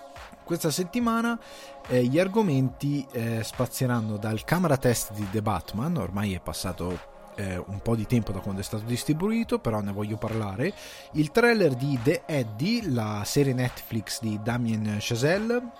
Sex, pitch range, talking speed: male, 110-145 Hz, 155 wpm